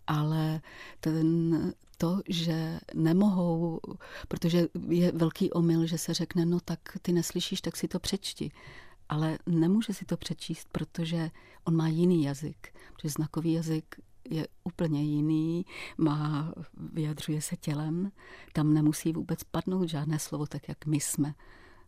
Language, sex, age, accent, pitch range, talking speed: Czech, female, 40-59, native, 150-165 Hz, 130 wpm